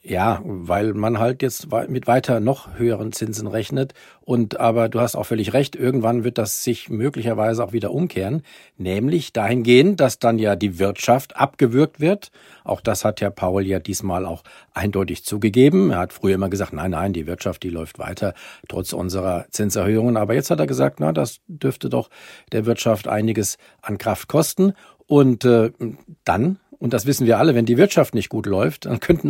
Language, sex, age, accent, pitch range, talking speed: German, male, 50-69, German, 105-135 Hz, 185 wpm